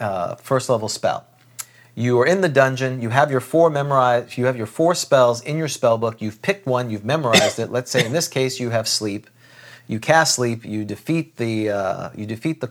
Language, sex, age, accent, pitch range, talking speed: English, male, 40-59, American, 115-140 Hz, 215 wpm